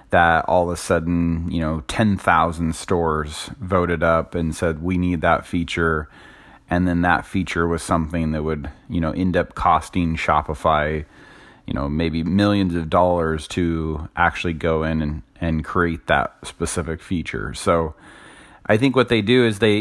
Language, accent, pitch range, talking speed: English, American, 80-95 Hz, 170 wpm